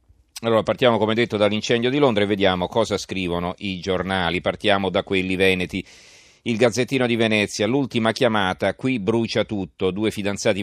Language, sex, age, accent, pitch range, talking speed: Italian, male, 40-59, native, 90-110 Hz, 160 wpm